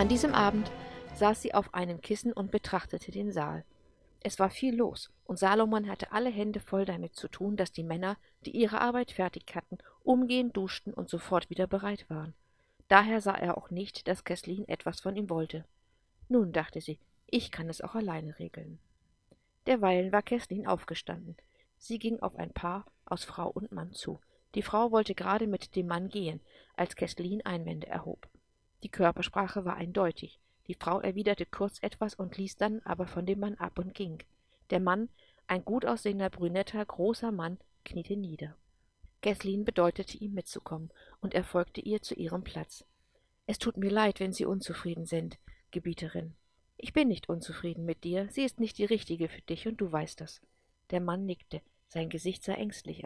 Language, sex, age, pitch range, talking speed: English, female, 50-69, 175-215 Hz, 180 wpm